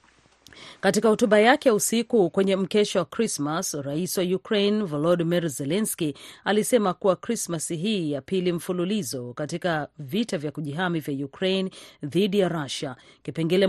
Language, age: Swahili, 40-59